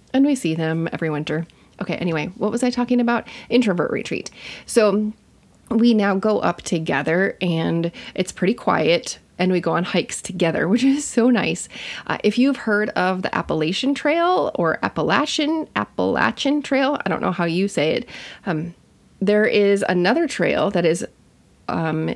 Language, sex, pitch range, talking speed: English, female, 165-220 Hz, 170 wpm